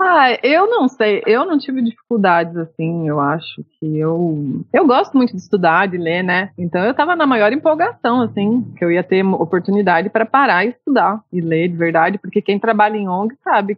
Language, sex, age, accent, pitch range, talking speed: Portuguese, female, 20-39, Brazilian, 170-220 Hz, 205 wpm